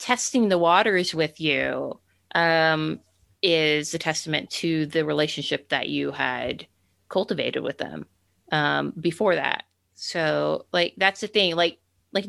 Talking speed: 135 wpm